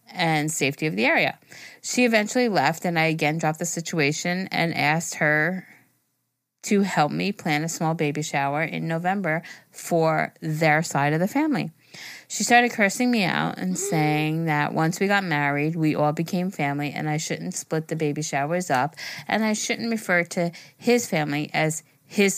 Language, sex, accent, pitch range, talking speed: English, female, American, 150-190 Hz, 175 wpm